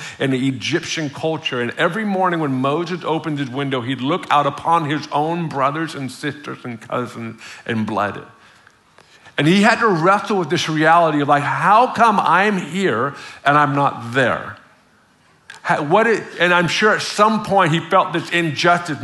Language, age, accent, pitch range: English, 50-69, American, 135-185 Hz